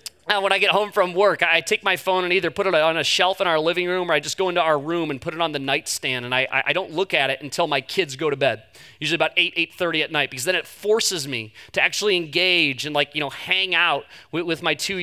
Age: 30-49